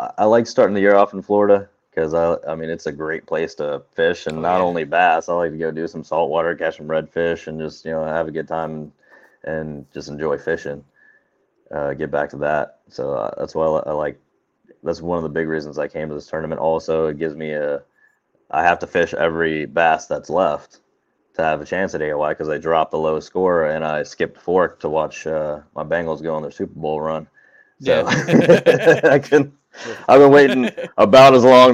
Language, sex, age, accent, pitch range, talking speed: English, male, 30-49, American, 80-100 Hz, 220 wpm